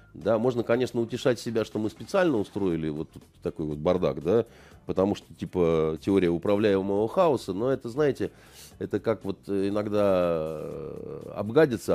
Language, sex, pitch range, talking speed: Russian, male, 85-120 Hz, 145 wpm